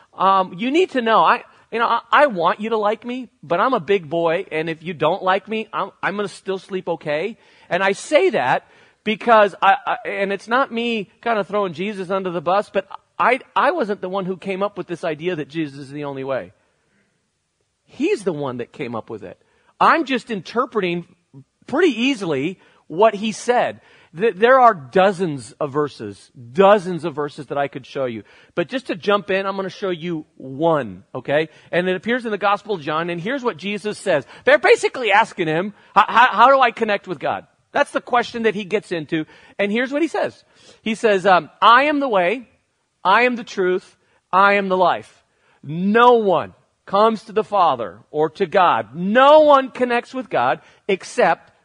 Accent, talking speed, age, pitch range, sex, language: American, 205 wpm, 40-59, 170-230 Hz, male, English